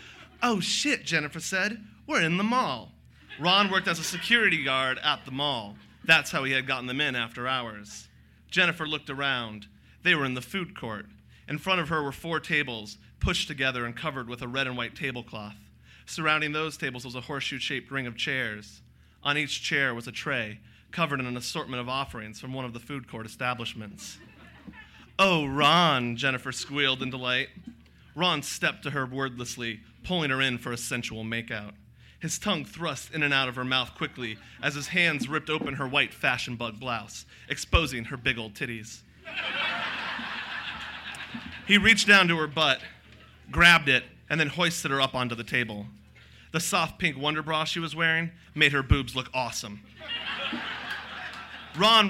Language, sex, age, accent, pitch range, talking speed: English, male, 30-49, American, 120-160 Hz, 175 wpm